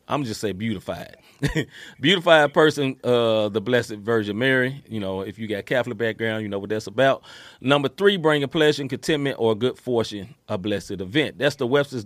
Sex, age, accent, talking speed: male, 30-49, American, 200 wpm